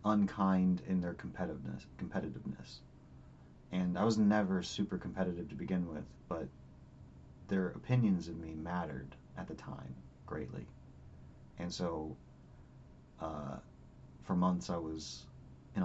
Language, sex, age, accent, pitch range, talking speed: English, male, 30-49, American, 65-90 Hz, 120 wpm